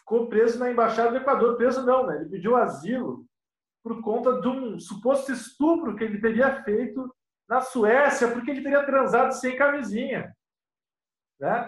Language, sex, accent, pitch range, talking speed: Portuguese, male, Brazilian, 210-265 Hz, 160 wpm